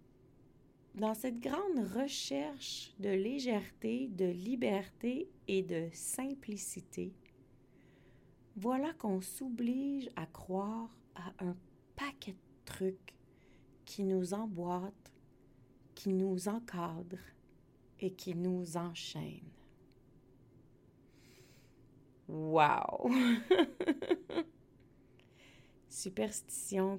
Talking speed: 75 wpm